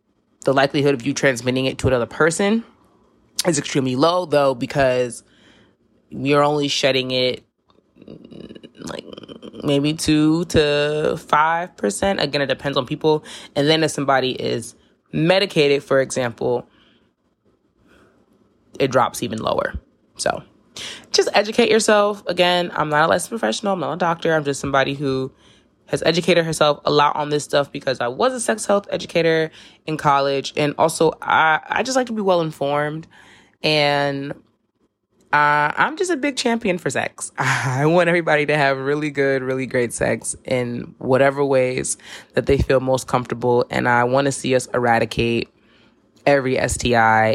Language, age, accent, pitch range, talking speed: English, 20-39, American, 130-165 Hz, 155 wpm